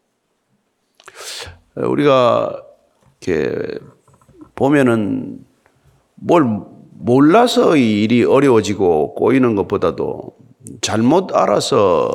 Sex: male